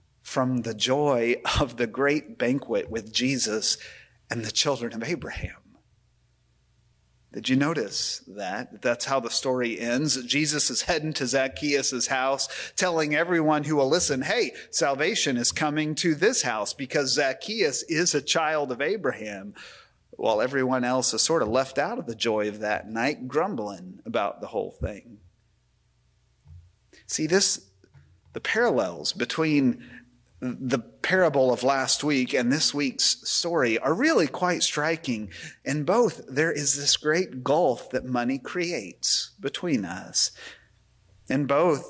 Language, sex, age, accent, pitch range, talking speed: English, male, 40-59, American, 115-145 Hz, 140 wpm